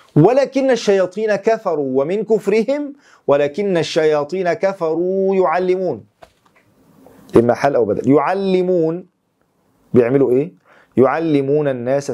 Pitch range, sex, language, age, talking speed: 130-160 Hz, male, English, 40-59, 85 wpm